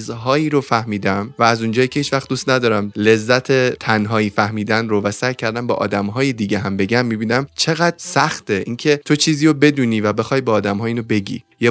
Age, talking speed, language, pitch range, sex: 20-39, 185 wpm, Persian, 105-125 Hz, male